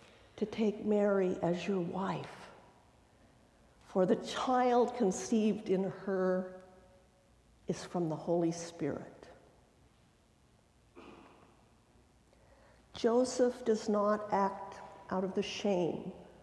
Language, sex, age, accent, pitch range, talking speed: English, female, 50-69, American, 180-220 Hz, 90 wpm